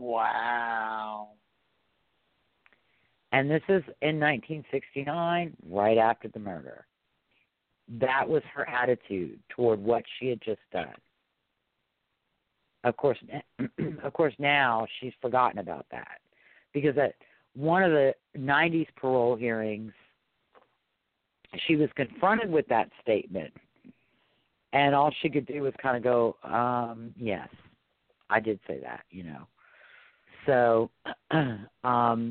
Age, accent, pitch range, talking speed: 50-69, American, 110-140 Hz, 115 wpm